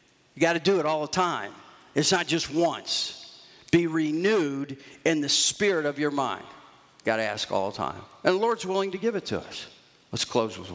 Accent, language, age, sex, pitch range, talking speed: American, English, 50-69, male, 115-150 Hz, 220 wpm